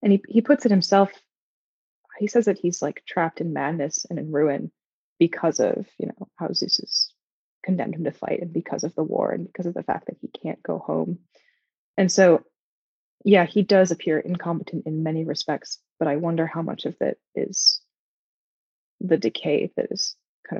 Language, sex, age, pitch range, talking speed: English, female, 20-39, 160-215 Hz, 190 wpm